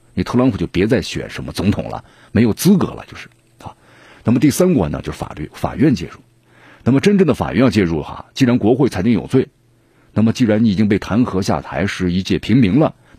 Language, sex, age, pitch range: Chinese, male, 50-69, 95-120 Hz